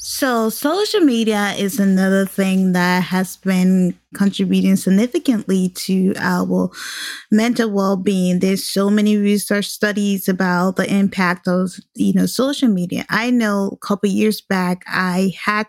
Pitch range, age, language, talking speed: 190-235 Hz, 10-29, English, 140 wpm